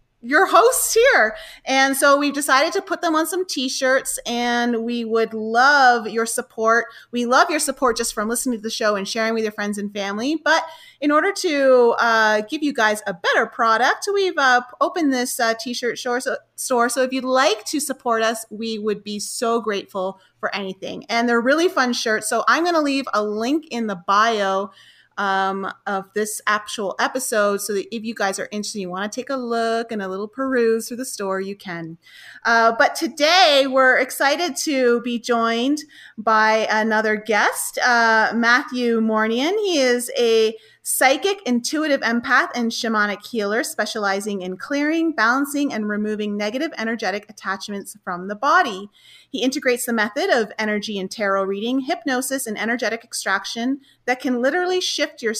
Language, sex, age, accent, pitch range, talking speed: English, female, 30-49, American, 215-275 Hz, 175 wpm